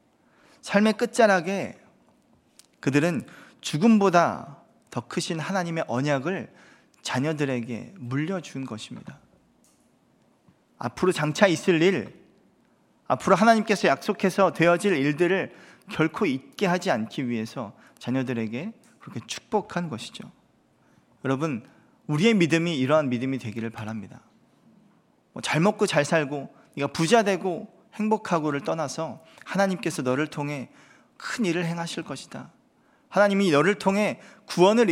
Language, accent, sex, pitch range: Korean, native, male, 140-205 Hz